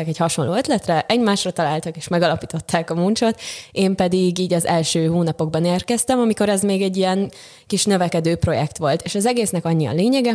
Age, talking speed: 20-39, 180 wpm